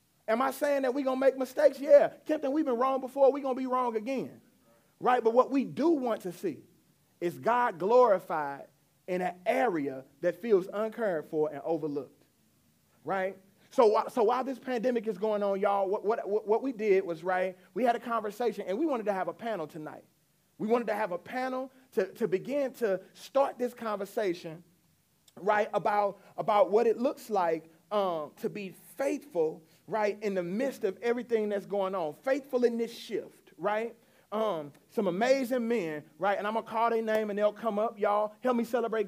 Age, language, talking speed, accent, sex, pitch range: 30-49, English, 200 wpm, American, male, 195-245 Hz